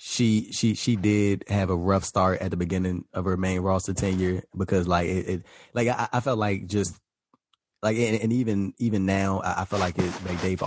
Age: 20-39